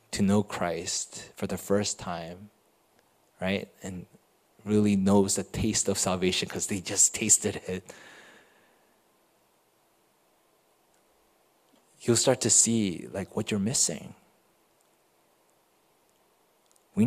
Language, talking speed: English, 100 wpm